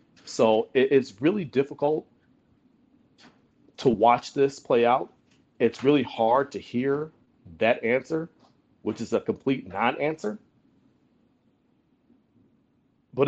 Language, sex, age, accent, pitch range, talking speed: English, male, 40-59, American, 115-165 Hz, 105 wpm